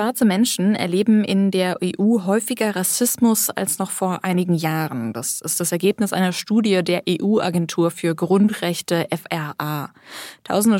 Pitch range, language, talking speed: 170-210 Hz, German, 140 wpm